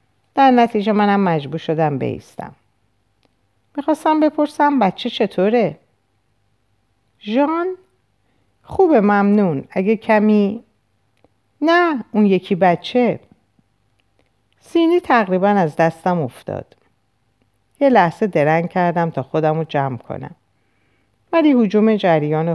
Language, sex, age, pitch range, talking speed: Persian, female, 50-69, 130-205 Hz, 95 wpm